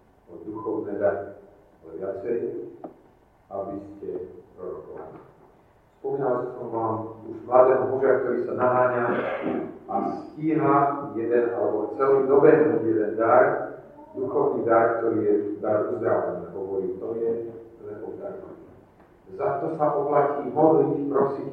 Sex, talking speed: male, 110 wpm